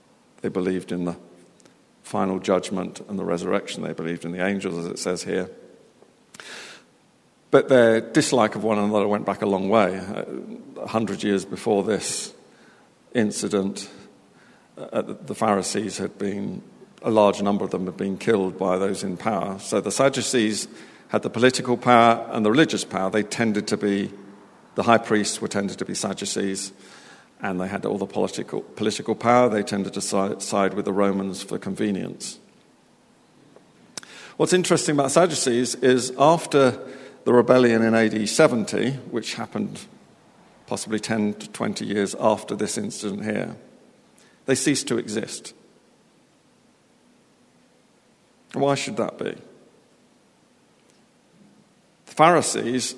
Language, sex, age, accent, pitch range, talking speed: English, male, 50-69, British, 100-125 Hz, 140 wpm